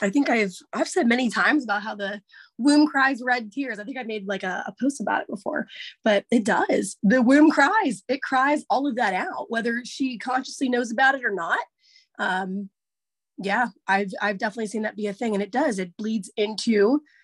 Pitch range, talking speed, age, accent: 210-270 Hz, 210 wpm, 20-39, American